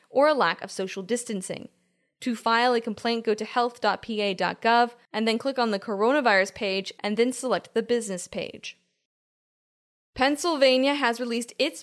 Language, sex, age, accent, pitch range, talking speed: English, female, 10-29, American, 205-250 Hz, 150 wpm